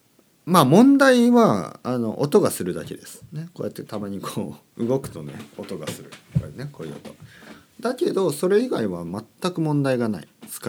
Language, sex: Japanese, male